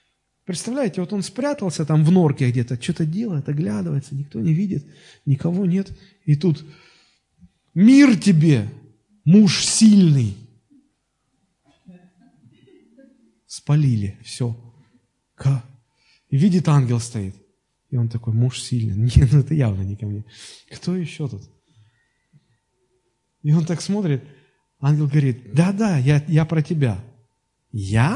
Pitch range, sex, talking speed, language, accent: 125-185 Hz, male, 120 wpm, Russian, native